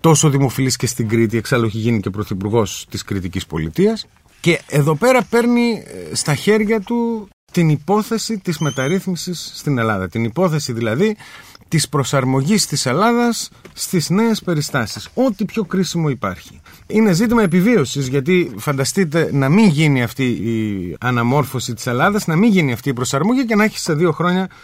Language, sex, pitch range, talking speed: Greek, male, 120-185 Hz, 160 wpm